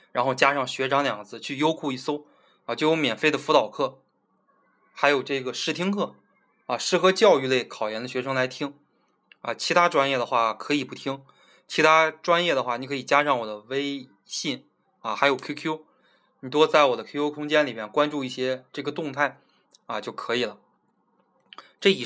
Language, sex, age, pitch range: Chinese, male, 20-39, 125-155 Hz